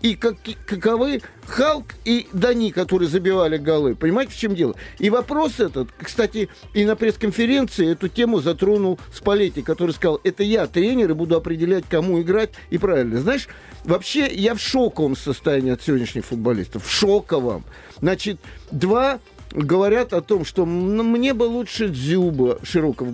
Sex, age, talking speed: male, 50-69, 150 wpm